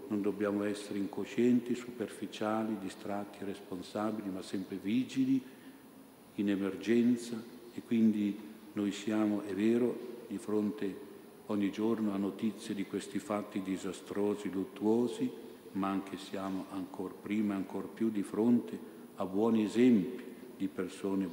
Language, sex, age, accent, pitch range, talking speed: Italian, male, 50-69, native, 95-115 Hz, 125 wpm